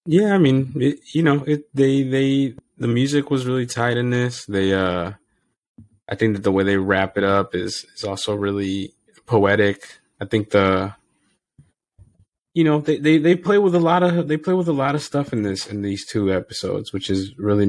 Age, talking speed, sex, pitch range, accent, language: 20-39, 205 wpm, male, 95-125 Hz, American, English